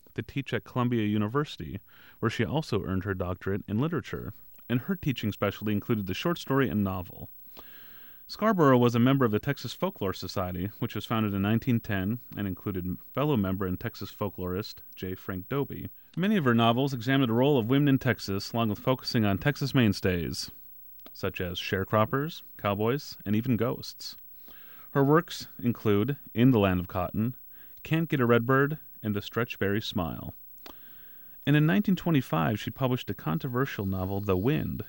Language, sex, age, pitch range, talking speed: English, male, 30-49, 100-135 Hz, 165 wpm